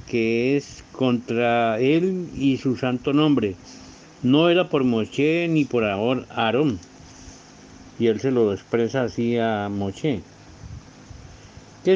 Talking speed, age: 120 wpm, 50-69